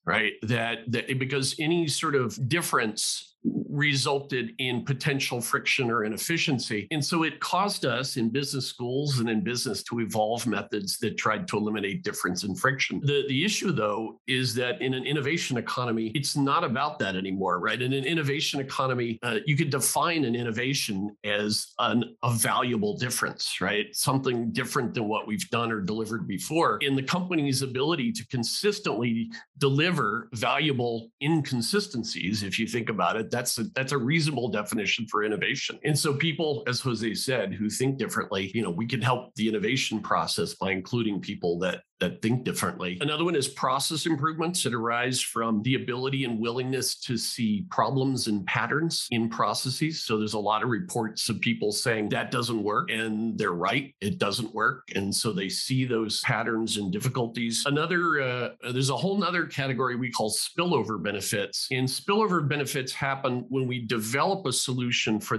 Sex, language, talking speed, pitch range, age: male, English, 170 wpm, 115-140 Hz, 50-69